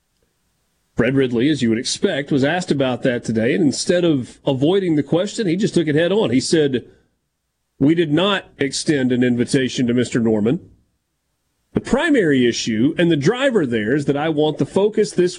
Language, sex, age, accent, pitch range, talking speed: English, male, 40-59, American, 125-165 Hz, 185 wpm